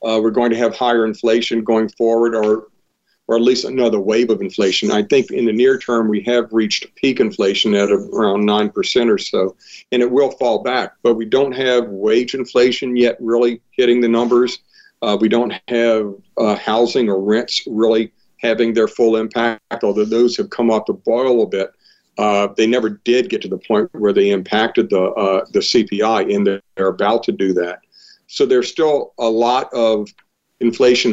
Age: 50-69